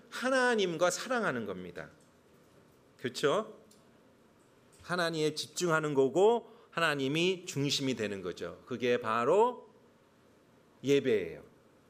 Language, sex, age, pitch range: Korean, male, 40-59, 135-190 Hz